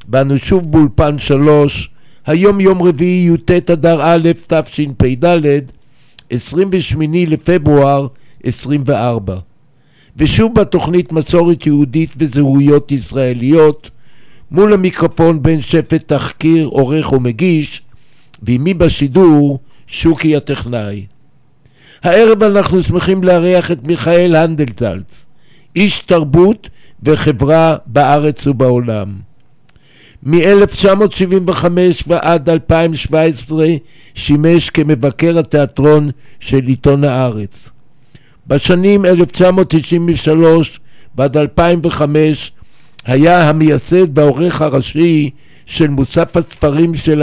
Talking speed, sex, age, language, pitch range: 85 wpm, male, 60-79, Hebrew, 140-170 Hz